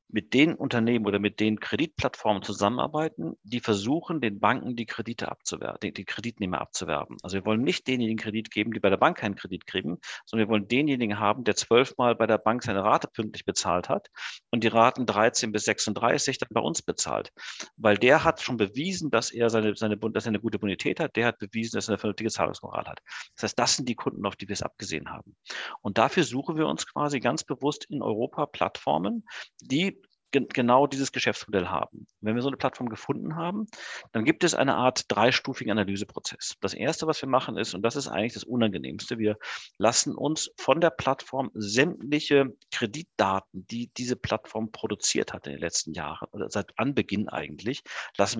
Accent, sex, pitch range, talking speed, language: German, male, 110-135 Hz, 190 wpm, German